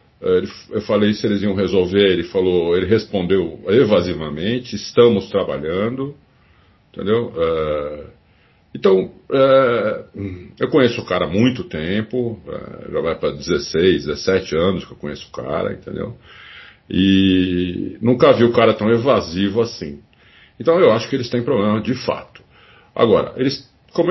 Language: Portuguese